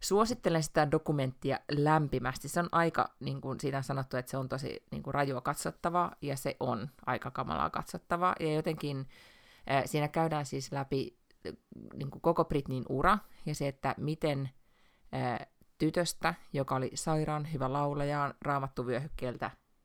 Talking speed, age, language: 140 wpm, 30-49, Finnish